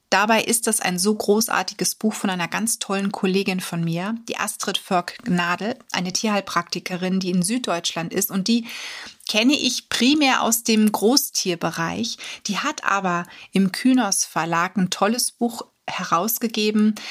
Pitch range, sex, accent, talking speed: 190-235 Hz, female, German, 145 wpm